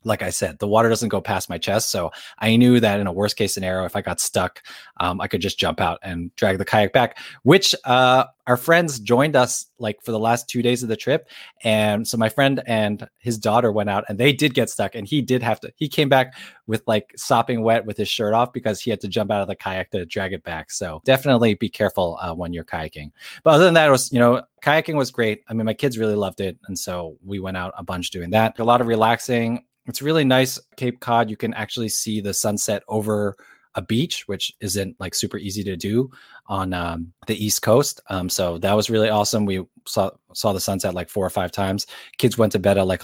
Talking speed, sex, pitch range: 250 wpm, male, 100-120 Hz